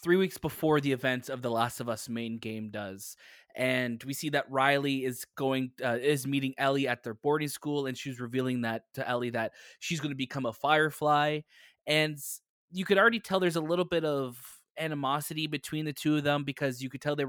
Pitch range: 120-145 Hz